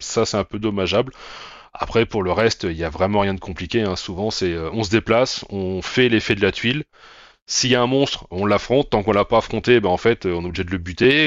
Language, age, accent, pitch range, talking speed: French, 30-49, French, 90-115 Hz, 265 wpm